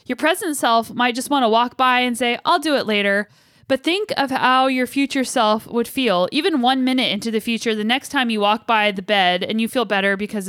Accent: American